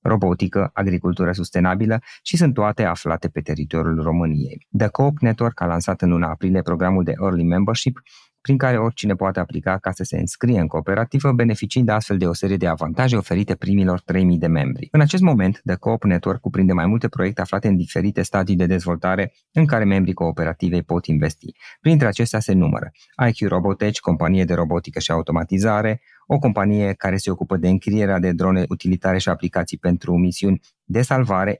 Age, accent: 20-39, native